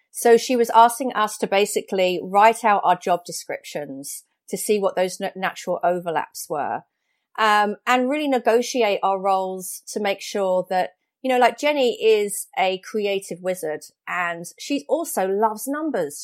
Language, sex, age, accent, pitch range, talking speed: English, female, 40-59, British, 175-235 Hz, 155 wpm